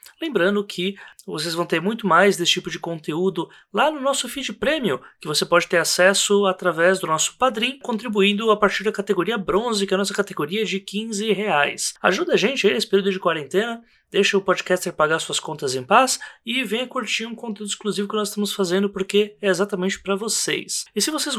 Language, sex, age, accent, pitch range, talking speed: Portuguese, male, 20-39, Brazilian, 170-230 Hz, 200 wpm